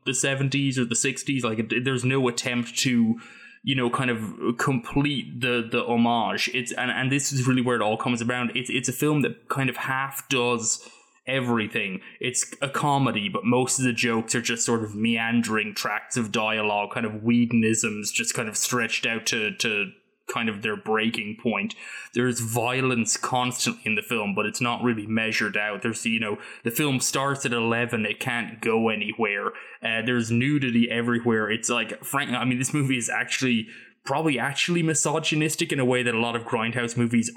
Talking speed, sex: 190 wpm, male